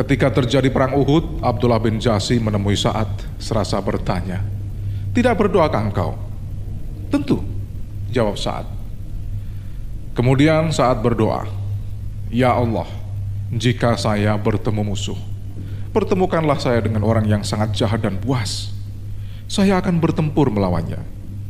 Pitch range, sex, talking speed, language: 100-130 Hz, male, 110 wpm, Indonesian